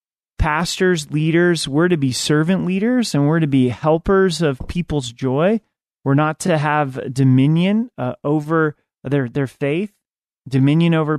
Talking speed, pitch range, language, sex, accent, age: 145 wpm, 130-160 Hz, English, male, American, 30-49